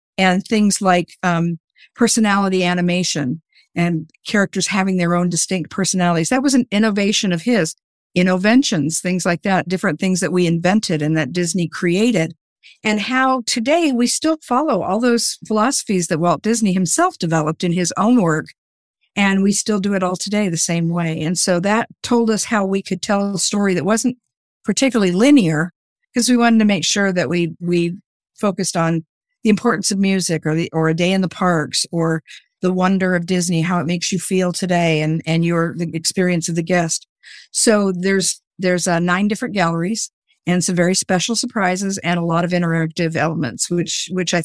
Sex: female